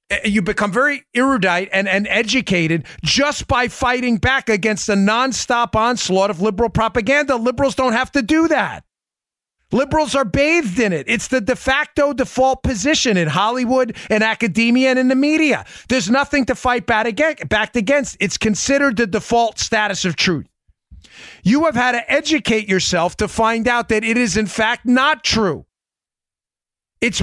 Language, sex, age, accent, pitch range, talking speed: English, male, 30-49, American, 200-250 Hz, 160 wpm